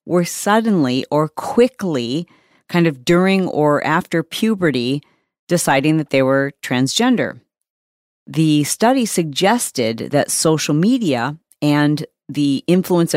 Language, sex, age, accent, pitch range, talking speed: English, female, 40-59, American, 140-180 Hz, 110 wpm